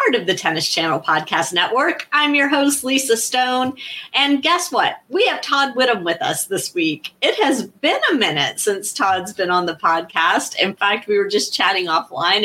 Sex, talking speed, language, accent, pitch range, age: female, 195 wpm, English, American, 175-255 Hz, 30-49